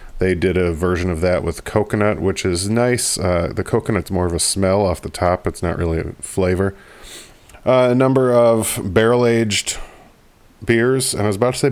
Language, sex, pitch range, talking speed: English, male, 90-115 Hz, 195 wpm